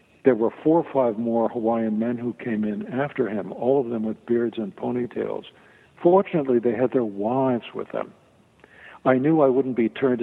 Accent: American